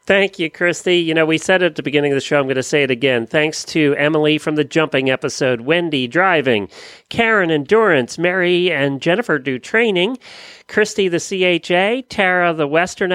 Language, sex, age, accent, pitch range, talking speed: English, male, 40-59, American, 140-200 Hz, 185 wpm